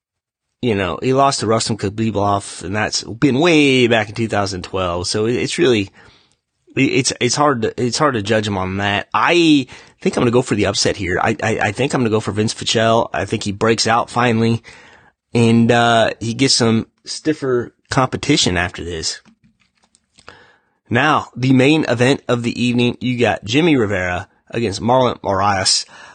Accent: American